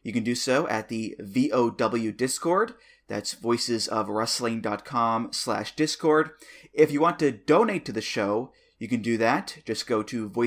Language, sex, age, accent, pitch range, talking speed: English, male, 30-49, American, 110-130 Hz, 155 wpm